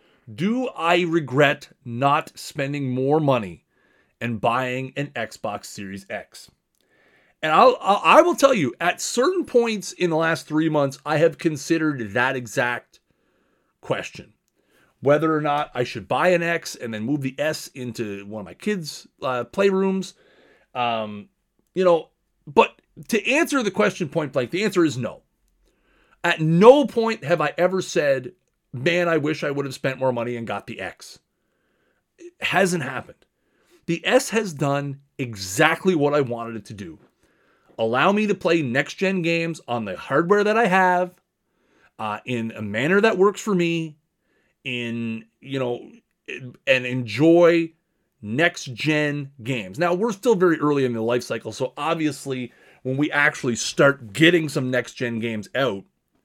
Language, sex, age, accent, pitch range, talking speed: English, male, 30-49, American, 125-180 Hz, 160 wpm